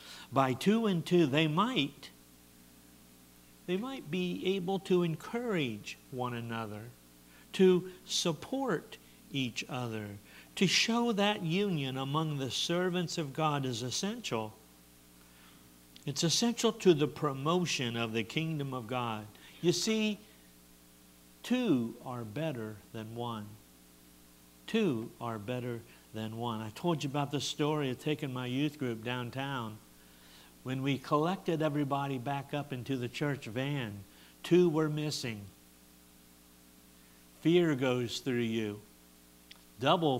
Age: 60-79